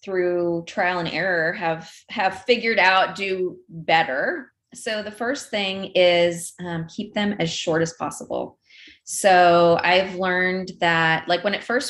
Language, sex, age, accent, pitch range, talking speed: English, female, 30-49, American, 170-225 Hz, 150 wpm